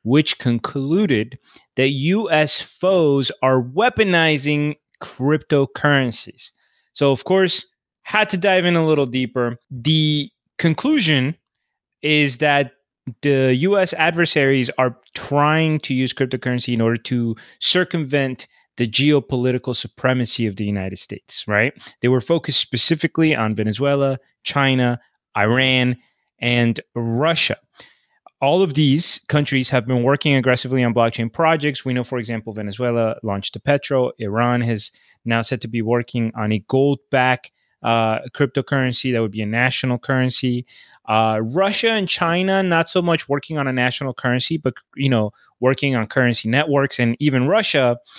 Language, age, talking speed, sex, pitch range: English, 30-49, 140 wpm, male, 120-150 Hz